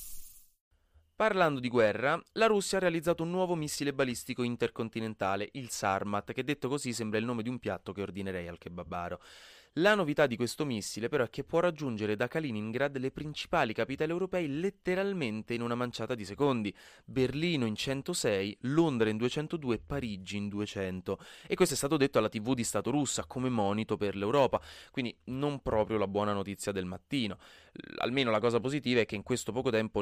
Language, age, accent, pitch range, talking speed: Italian, 30-49, native, 105-145 Hz, 180 wpm